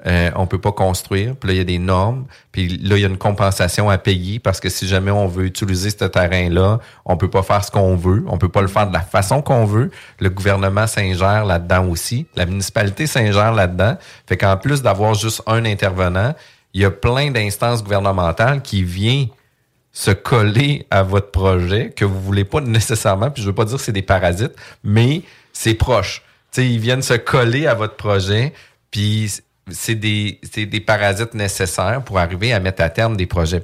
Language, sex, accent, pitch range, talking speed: French, male, Canadian, 95-115 Hz, 205 wpm